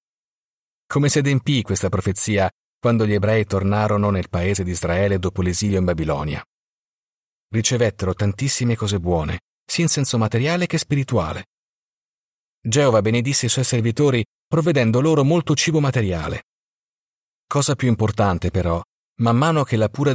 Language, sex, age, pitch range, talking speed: Italian, male, 40-59, 100-130 Hz, 135 wpm